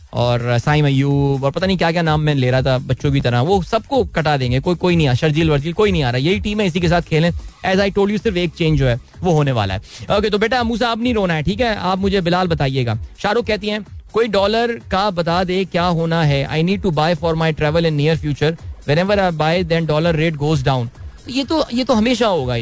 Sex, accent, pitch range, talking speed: male, native, 150-195 Hz, 265 wpm